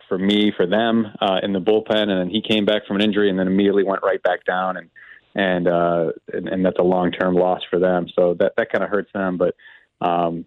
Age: 30-49